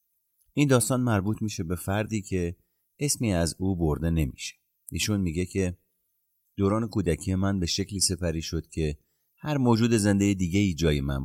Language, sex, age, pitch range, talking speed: Persian, male, 30-49, 80-100 Hz, 160 wpm